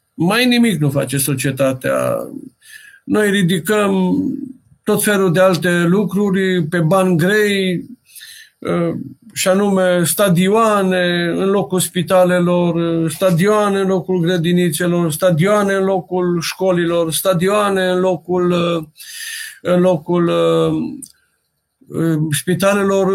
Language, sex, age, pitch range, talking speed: Romanian, male, 50-69, 160-190 Hz, 90 wpm